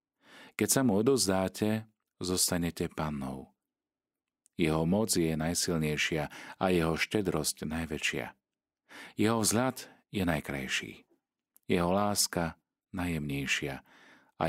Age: 40-59